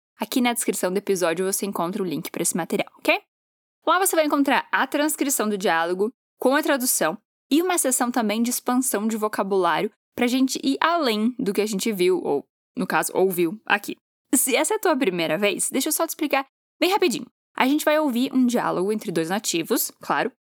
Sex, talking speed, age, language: female, 205 wpm, 10-29, Portuguese